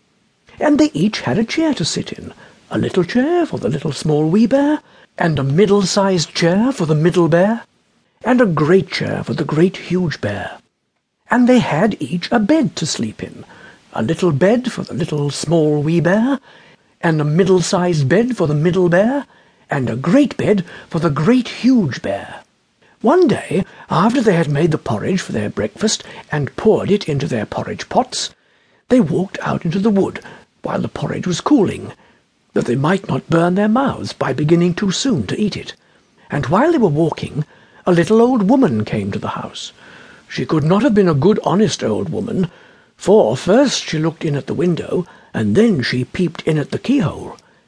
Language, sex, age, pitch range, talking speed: English, male, 60-79, 155-220 Hz, 190 wpm